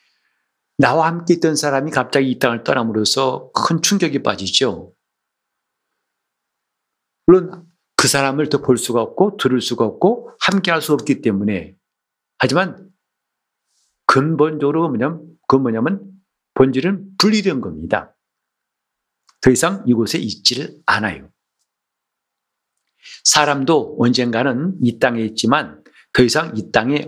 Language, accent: Korean, native